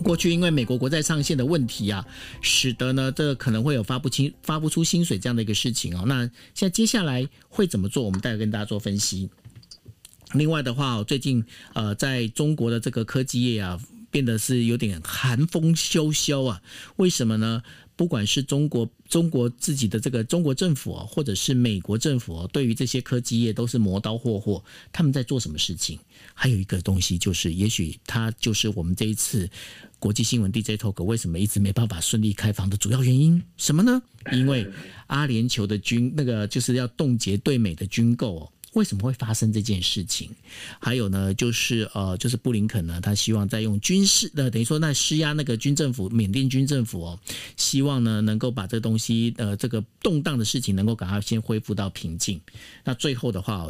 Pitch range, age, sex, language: 105-135 Hz, 50-69, male, Chinese